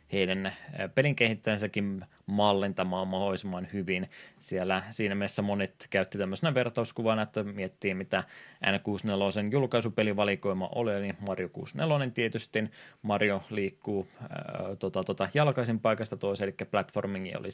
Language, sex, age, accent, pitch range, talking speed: Finnish, male, 20-39, native, 95-110 Hz, 120 wpm